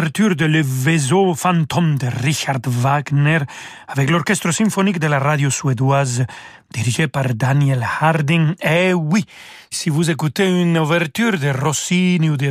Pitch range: 140-180 Hz